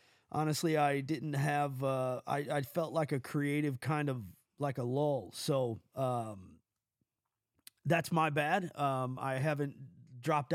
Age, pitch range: 30-49, 130-155 Hz